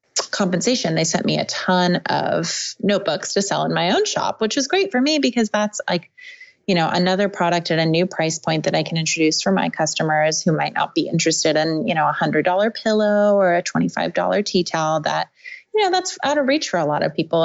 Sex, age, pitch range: female, 20-39, 165-245 Hz